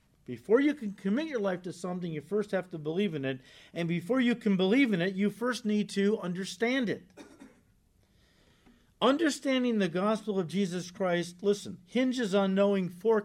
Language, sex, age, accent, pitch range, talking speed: English, male, 50-69, American, 165-215 Hz, 175 wpm